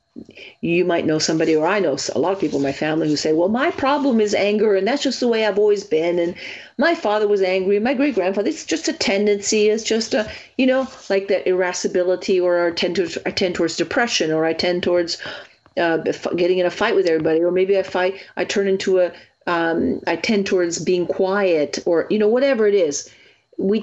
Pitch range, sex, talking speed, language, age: 170-220 Hz, female, 225 wpm, English, 40-59